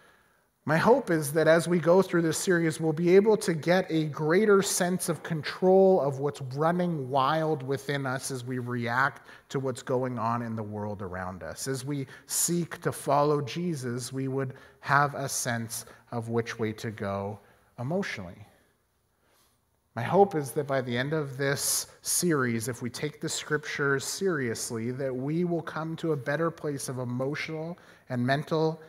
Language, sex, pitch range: English, male, 135-190 Hz